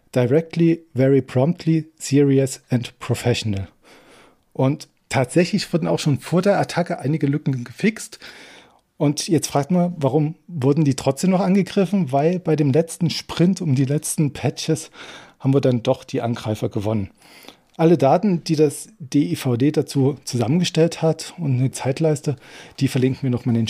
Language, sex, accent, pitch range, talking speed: German, male, German, 125-155 Hz, 150 wpm